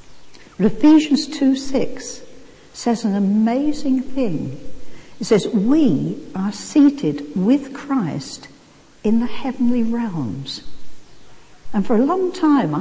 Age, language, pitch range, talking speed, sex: 60-79, English, 175-250 Hz, 105 wpm, female